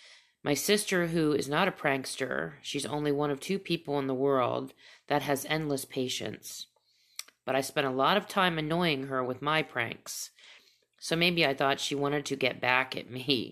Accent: American